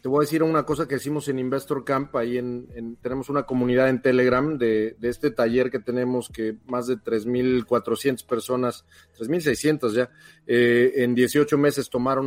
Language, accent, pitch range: Spanish, Mexican, 125-145 Hz